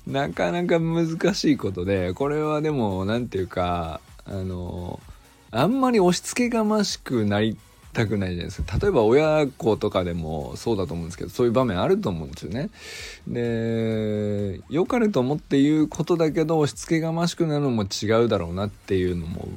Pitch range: 100-140 Hz